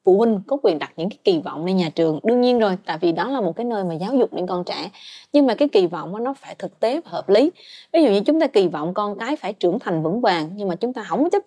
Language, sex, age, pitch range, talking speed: Vietnamese, female, 20-39, 170-265 Hz, 315 wpm